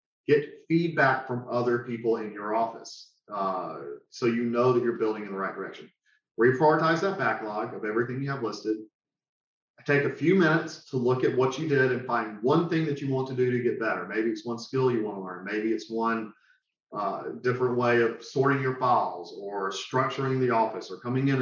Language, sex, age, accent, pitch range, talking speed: English, male, 40-59, American, 110-140 Hz, 205 wpm